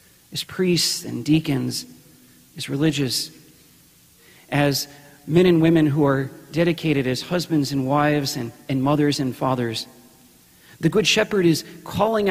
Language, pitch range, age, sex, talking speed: English, 135-165 Hz, 40-59, male, 130 wpm